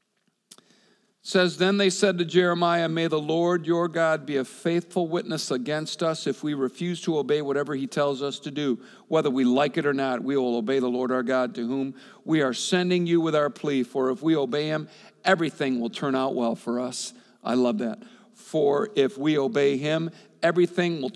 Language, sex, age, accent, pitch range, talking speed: English, male, 50-69, American, 140-185 Hz, 205 wpm